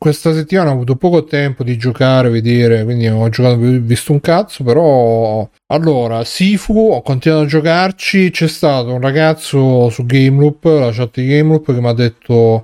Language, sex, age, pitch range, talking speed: Italian, male, 30-49, 120-155 Hz, 185 wpm